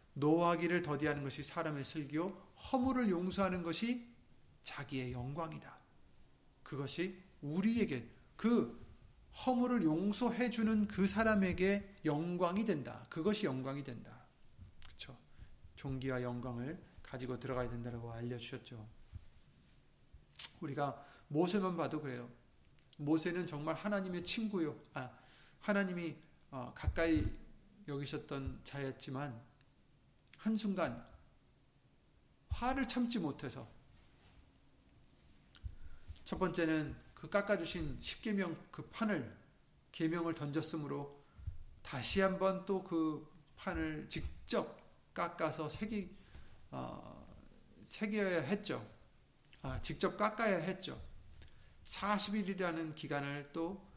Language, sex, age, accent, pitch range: Korean, male, 30-49, native, 135-195 Hz